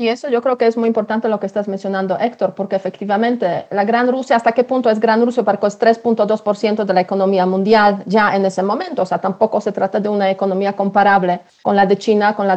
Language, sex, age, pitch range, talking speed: Spanish, female, 40-59, 195-230 Hz, 240 wpm